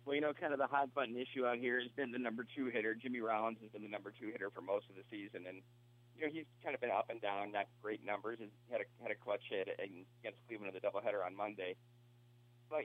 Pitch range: 110-125 Hz